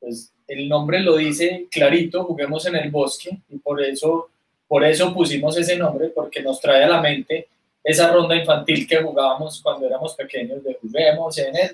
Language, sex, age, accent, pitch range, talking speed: Spanish, male, 20-39, Colombian, 145-175 Hz, 185 wpm